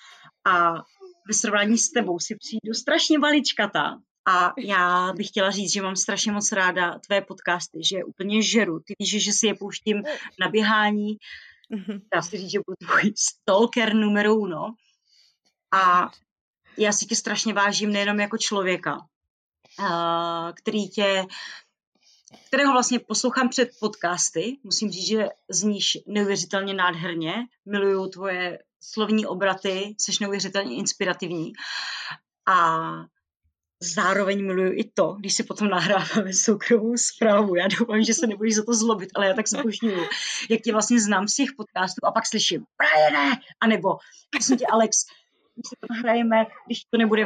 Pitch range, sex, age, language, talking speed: 190-225 Hz, female, 30-49, Czech, 145 wpm